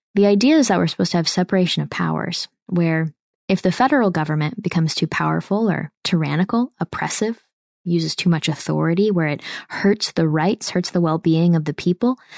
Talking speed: 180 wpm